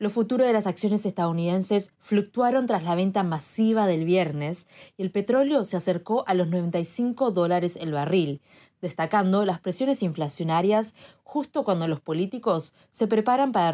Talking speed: 155 wpm